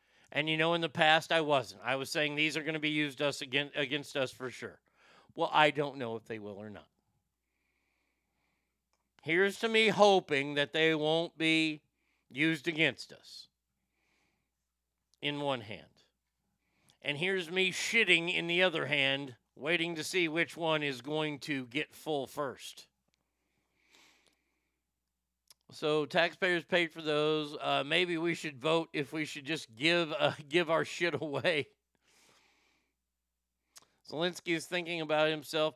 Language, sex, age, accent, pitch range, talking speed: English, male, 50-69, American, 125-160 Hz, 150 wpm